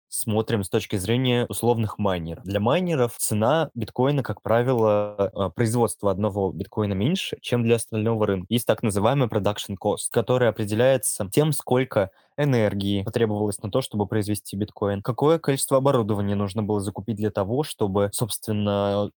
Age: 20-39